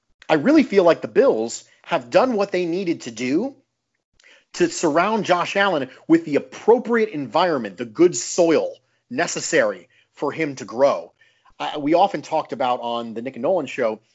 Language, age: English, 40-59